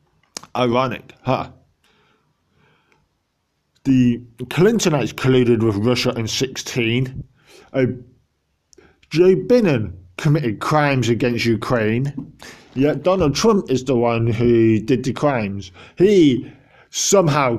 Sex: male